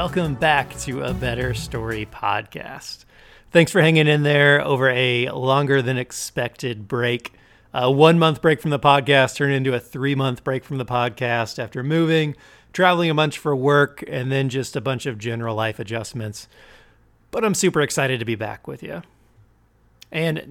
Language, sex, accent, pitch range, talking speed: English, male, American, 125-150 Hz, 170 wpm